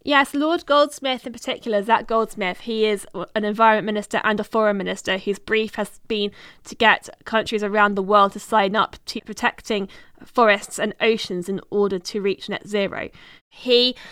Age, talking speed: 20-39, 175 wpm